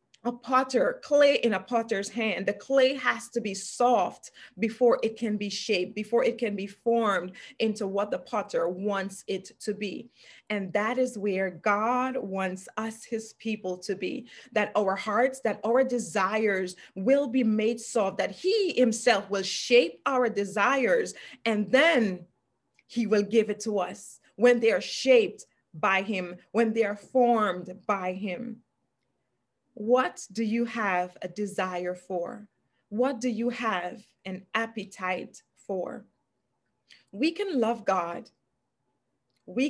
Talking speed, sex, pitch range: 150 wpm, female, 195-245 Hz